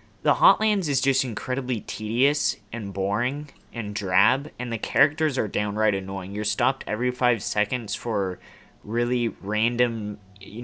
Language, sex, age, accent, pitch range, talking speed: English, male, 30-49, American, 100-130 Hz, 140 wpm